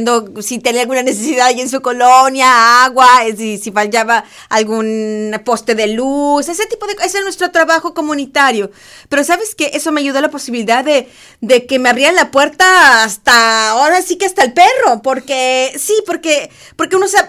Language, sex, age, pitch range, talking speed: English, female, 30-49, 210-285 Hz, 185 wpm